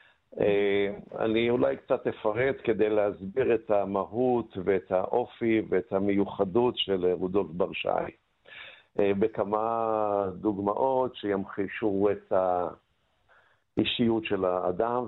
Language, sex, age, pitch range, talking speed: Hebrew, male, 50-69, 100-125 Hz, 90 wpm